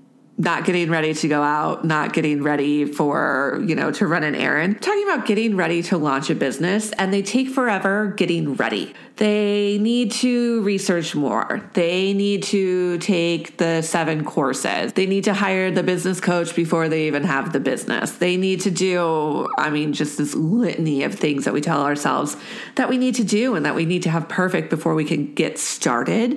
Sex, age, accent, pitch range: female, 30-49, American, 155-205 Hz